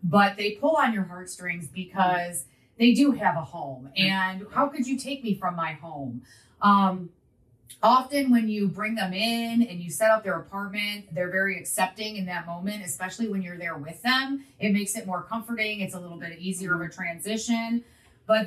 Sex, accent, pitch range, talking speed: female, American, 175-215 Hz, 195 wpm